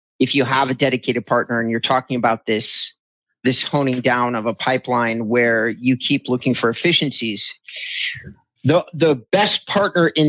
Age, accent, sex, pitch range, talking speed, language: 40-59, American, male, 120-145 Hz, 165 wpm, English